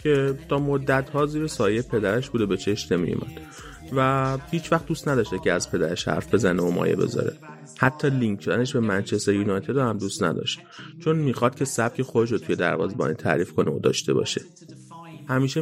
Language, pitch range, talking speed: Persian, 105-140 Hz, 185 wpm